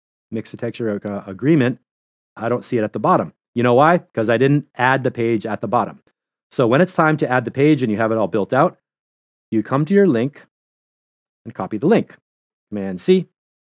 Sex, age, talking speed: male, 30-49, 215 wpm